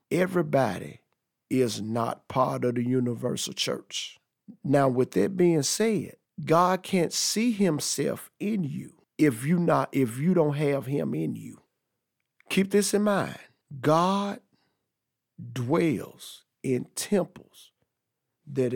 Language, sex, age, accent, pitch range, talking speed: English, male, 50-69, American, 125-165 Hz, 120 wpm